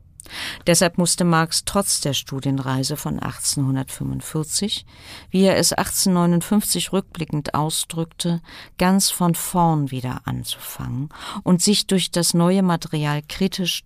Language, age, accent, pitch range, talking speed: German, 50-69, German, 145-180 Hz, 115 wpm